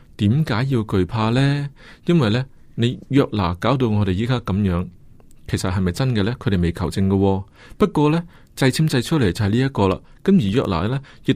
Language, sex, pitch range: Chinese, male, 100-140 Hz